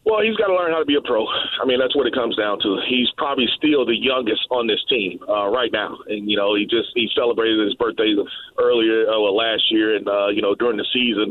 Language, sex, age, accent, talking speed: English, male, 40-59, American, 260 wpm